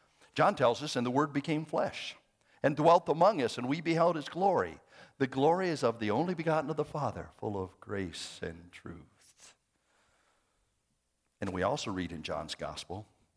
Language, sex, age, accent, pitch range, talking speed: English, male, 60-79, American, 95-150 Hz, 175 wpm